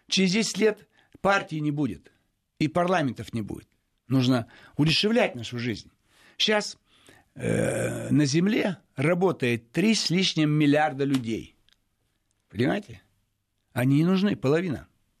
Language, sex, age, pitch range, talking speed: Russian, male, 60-79, 120-170 Hz, 115 wpm